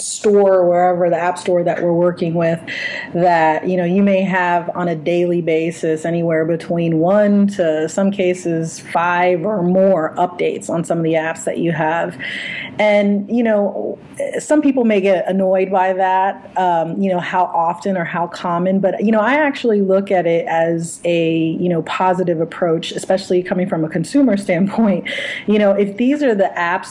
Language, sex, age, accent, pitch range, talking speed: English, female, 30-49, American, 170-200 Hz, 185 wpm